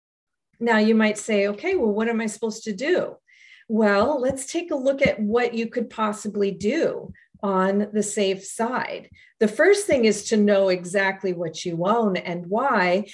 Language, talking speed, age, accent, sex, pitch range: English, 180 wpm, 40-59, American, female, 190-235 Hz